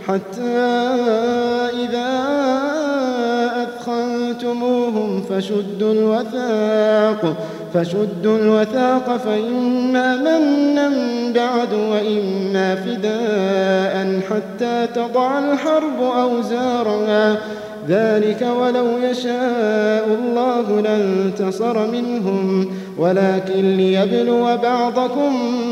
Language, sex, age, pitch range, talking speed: Arabic, male, 30-49, 215-275 Hz, 60 wpm